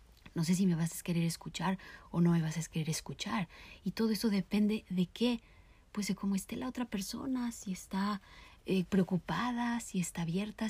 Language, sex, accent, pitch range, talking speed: Spanish, female, Mexican, 170-205 Hz, 195 wpm